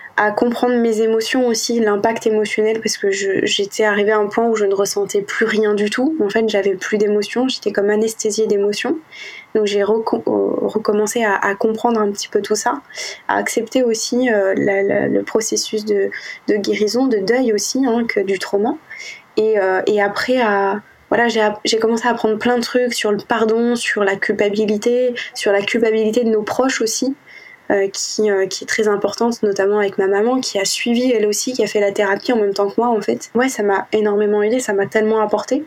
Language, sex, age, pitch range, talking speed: French, female, 20-39, 210-240 Hz, 210 wpm